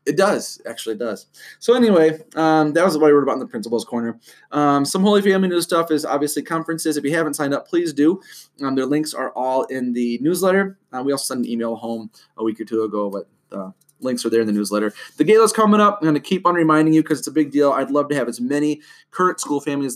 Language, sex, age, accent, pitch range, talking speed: English, male, 20-39, American, 115-150 Hz, 265 wpm